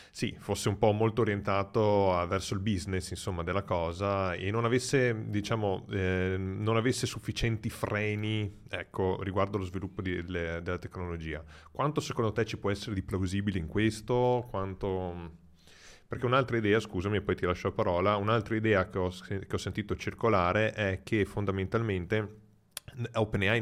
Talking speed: 160 wpm